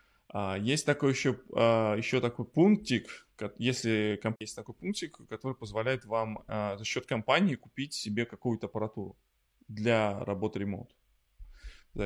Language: English